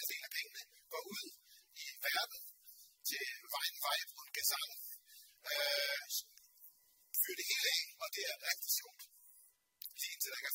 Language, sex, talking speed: Danish, male, 130 wpm